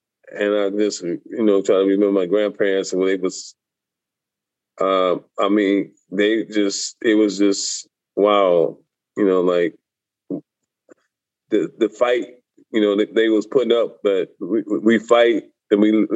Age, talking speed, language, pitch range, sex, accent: 20-39, 150 wpm, English, 100-115 Hz, male, American